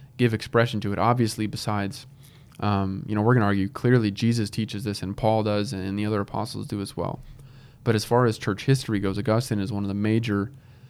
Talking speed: 220 wpm